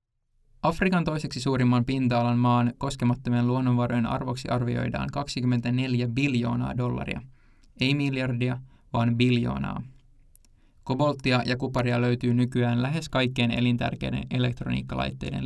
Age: 20-39